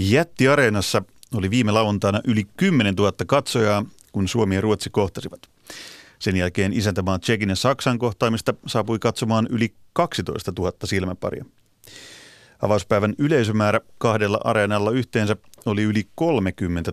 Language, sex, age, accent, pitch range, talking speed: Finnish, male, 30-49, native, 100-125 Hz, 115 wpm